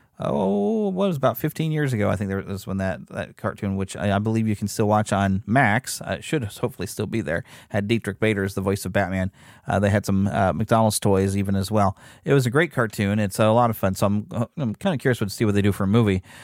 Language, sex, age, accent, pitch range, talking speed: English, male, 30-49, American, 105-140 Hz, 275 wpm